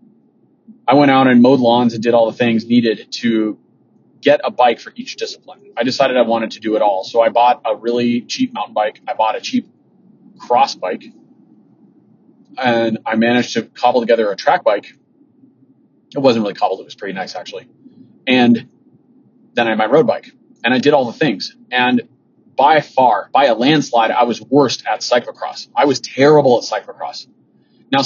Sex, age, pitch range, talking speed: male, 30-49, 115-155 Hz, 190 wpm